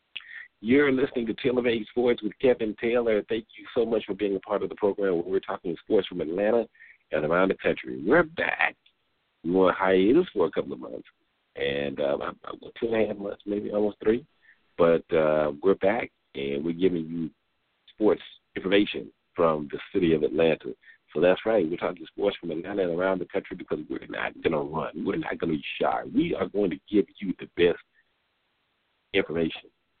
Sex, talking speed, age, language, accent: male, 200 wpm, 50-69, English, American